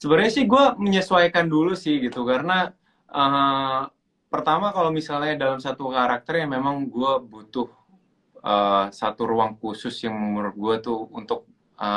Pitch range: 115-160 Hz